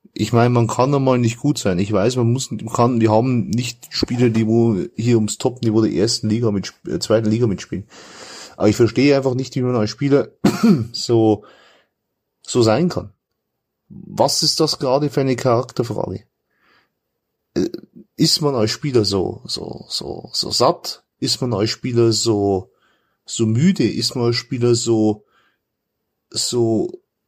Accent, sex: German, male